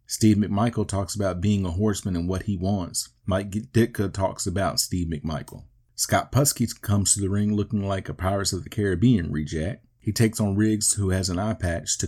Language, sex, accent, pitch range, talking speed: English, male, American, 90-110 Hz, 205 wpm